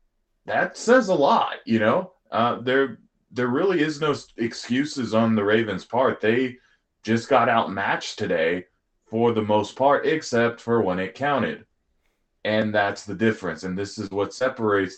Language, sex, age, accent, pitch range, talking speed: English, male, 20-39, American, 100-125 Hz, 160 wpm